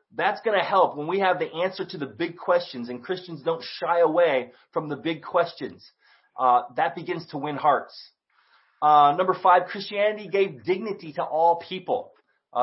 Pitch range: 140-180 Hz